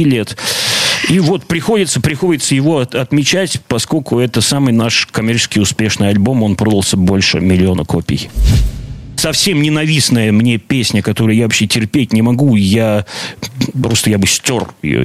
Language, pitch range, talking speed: Russian, 100-130 Hz, 145 wpm